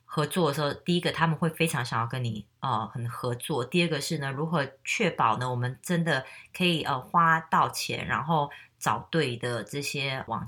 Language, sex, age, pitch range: Chinese, female, 20-39, 130-170 Hz